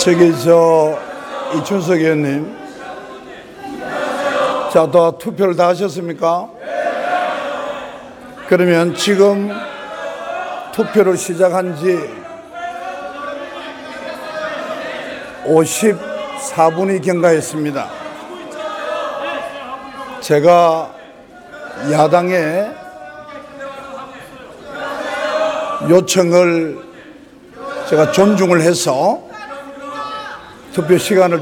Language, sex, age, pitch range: Korean, male, 50-69, 170-280 Hz